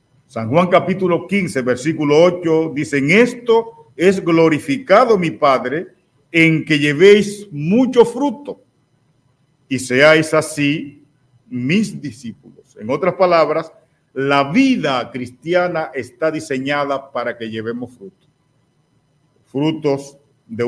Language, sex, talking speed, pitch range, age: Spanish, male, 105 wpm, 130-165 Hz, 50-69